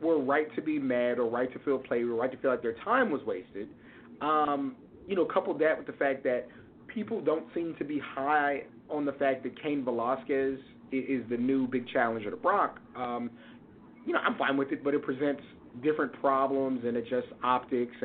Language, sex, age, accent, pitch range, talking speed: English, male, 30-49, American, 125-170 Hz, 215 wpm